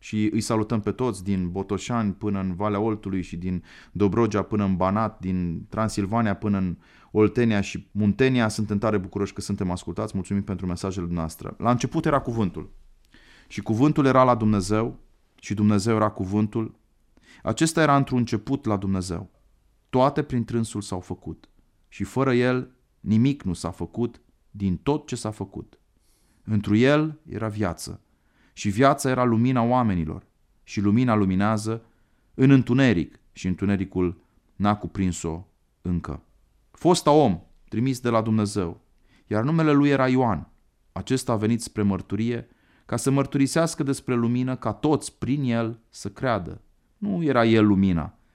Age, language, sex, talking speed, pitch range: 30-49, Romanian, male, 150 wpm, 95-125 Hz